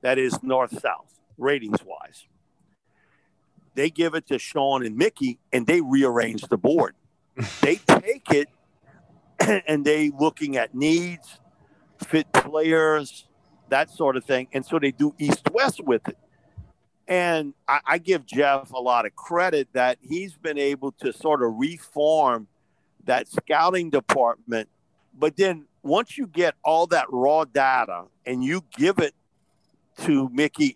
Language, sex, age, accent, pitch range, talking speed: English, male, 50-69, American, 130-165 Hz, 140 wpm